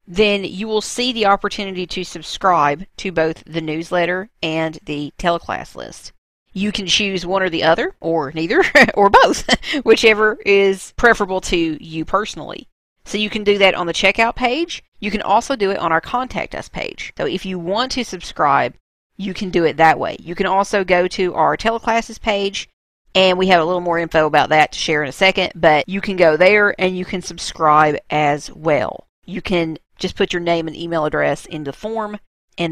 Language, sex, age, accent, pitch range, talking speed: English, female, 40-59, American, 160-195 Hz, 200 wpm